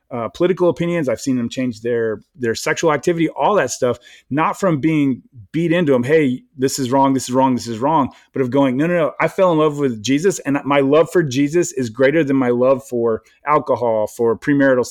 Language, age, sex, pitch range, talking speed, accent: English, 30-49, male, 125-155 Hz, 225 wpm, American